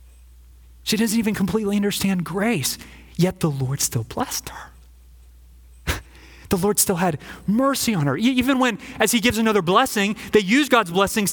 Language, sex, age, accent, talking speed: English, male, 30-49, American, 160 wpm